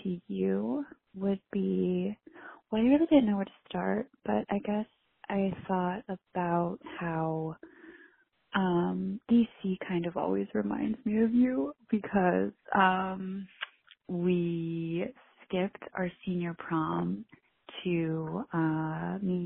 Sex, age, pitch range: female, 20-39, 170-210 Hz